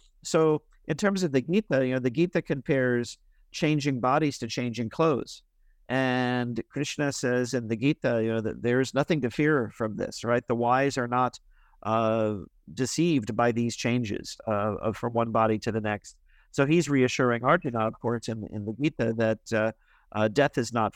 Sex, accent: male, American